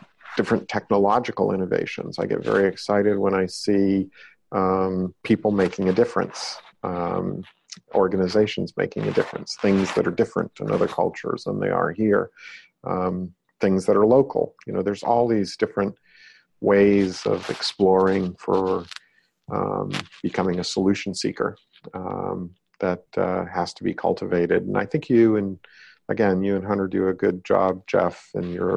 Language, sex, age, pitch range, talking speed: English, male, 50-69, 95-100 Hz, 155 wpm